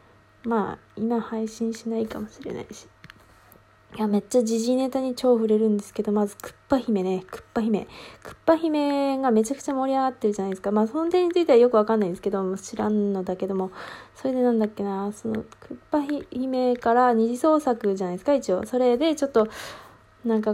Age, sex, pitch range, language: 20-39, female, 200-245 Hz, Japanese